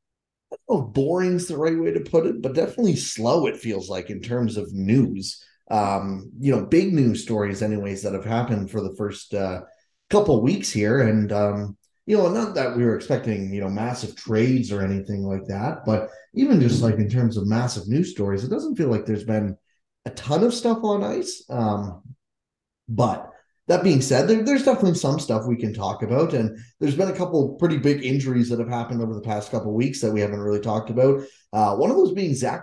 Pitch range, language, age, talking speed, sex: 105-140 Hz, English, 20-39, 215 wpm, male